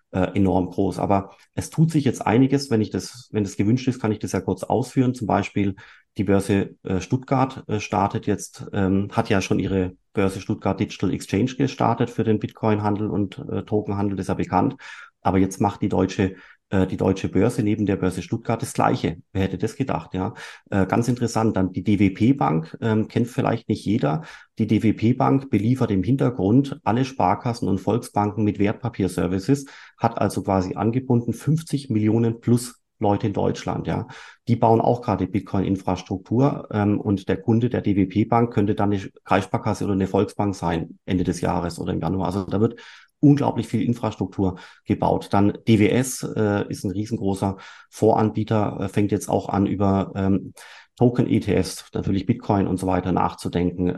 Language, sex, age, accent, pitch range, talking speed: German, male, 30-49, German, 95-115 Hz, 165 wpm